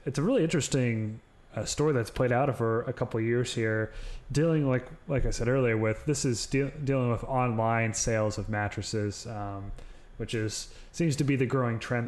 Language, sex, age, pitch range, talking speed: English, male, 30-49, 115-135 Hz, 200 wpm